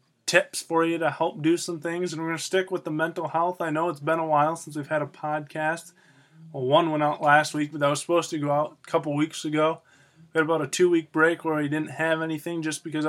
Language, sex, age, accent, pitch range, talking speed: English, male, 20-39, American, 145-165 Hz, 265 wpm